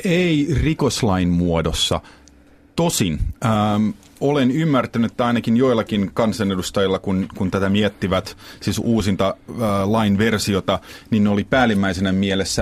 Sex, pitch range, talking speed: male, 95-120 Hz, 115 wpm